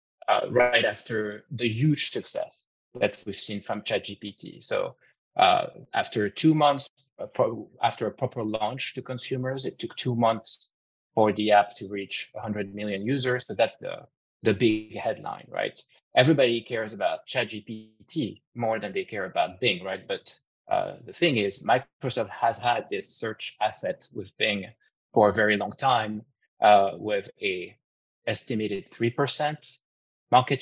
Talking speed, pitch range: 150 wpm, 105-140 Hz